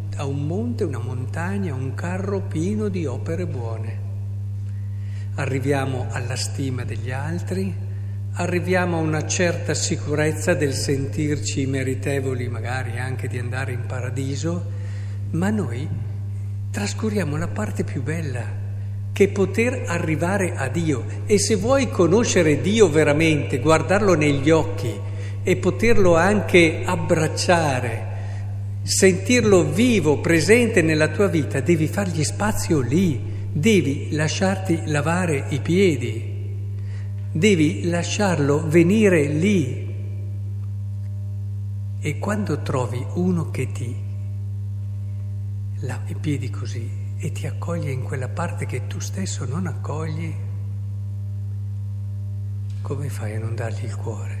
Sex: male